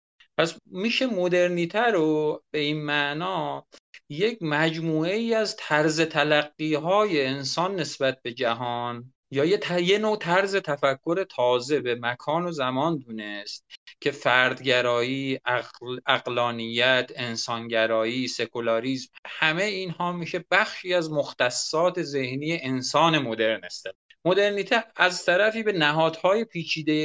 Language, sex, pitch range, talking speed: Persian, male, 125-165 Hz, 115 wpm